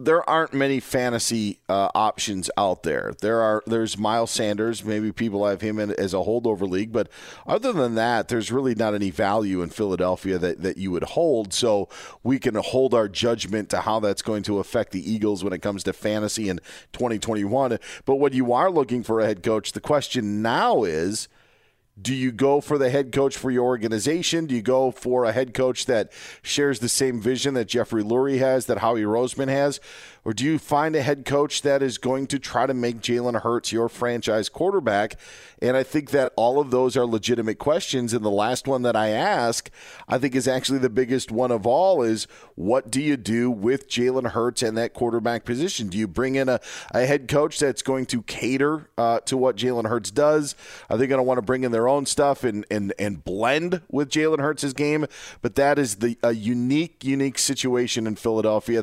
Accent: American